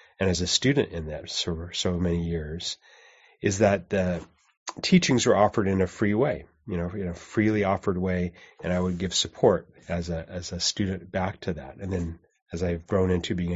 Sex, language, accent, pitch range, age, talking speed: male, English, American, 85-105 Hz, 30-49, 215 wpm